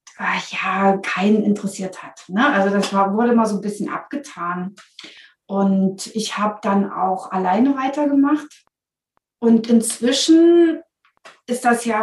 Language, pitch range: German, 195-245 Hz